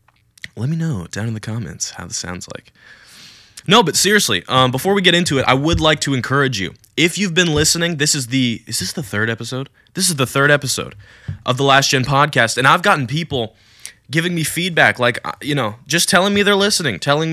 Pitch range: 115-145 Hz